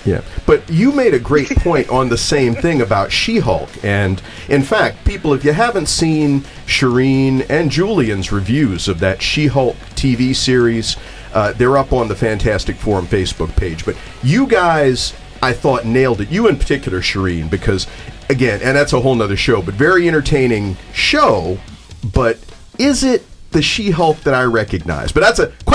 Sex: male